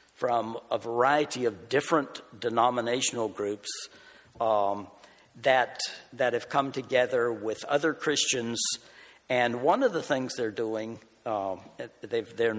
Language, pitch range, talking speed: English, 110-140 Hz, 130 wpm